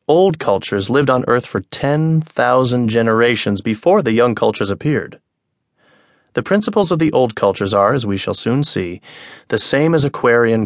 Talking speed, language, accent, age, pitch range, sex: 165 wpm, English, American, 30-49, 110-150 Hz, male